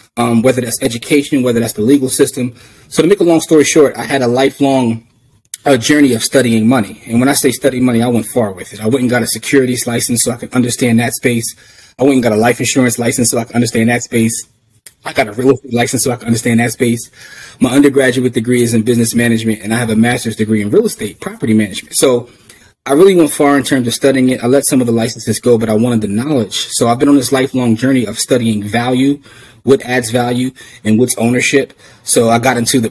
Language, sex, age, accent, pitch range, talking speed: English, male, 30-49, American, 115-135 Hz, 250 wpm